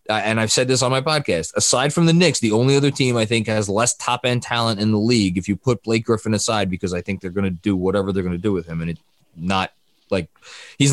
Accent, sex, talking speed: American, male, 275 wpm